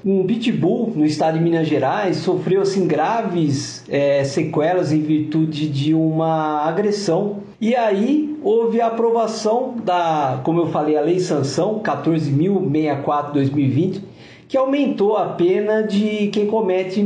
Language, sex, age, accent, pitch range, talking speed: Portuguese, male, 50-69, Brazilian, 155-205 Hz, 130 wpm